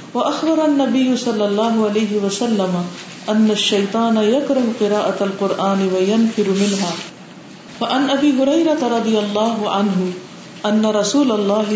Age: 40-59